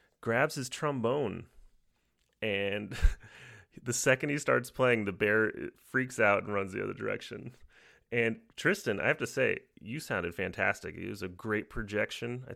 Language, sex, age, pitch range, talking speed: English, male, 30-49, 95-120 Hz, 160 wpm